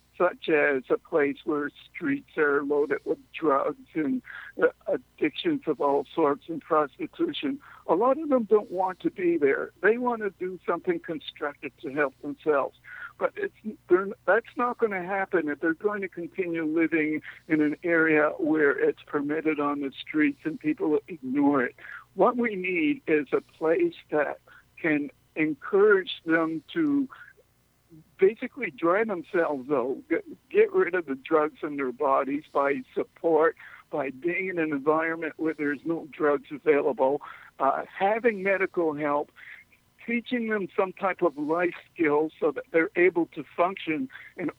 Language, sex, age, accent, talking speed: English, male, 60-79, American, 155 wpm